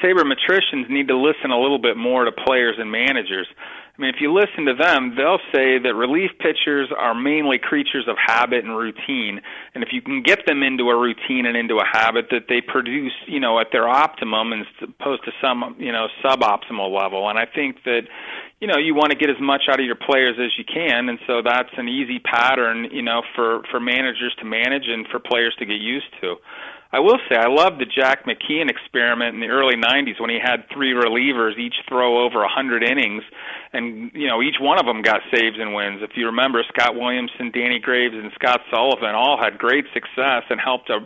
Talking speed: 220 wpm